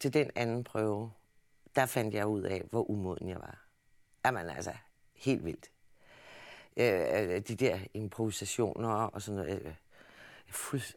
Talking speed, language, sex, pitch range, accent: 140 wpm, Danish, female, 105-125 Hz, native